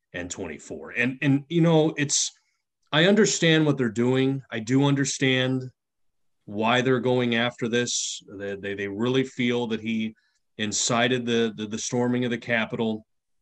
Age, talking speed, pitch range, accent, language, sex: 30-49, 160 wpm, 110-135 Hz, American, English, male